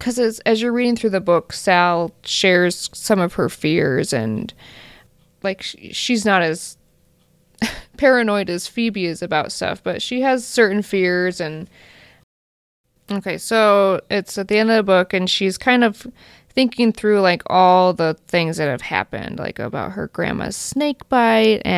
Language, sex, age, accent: English, female, 20-39, American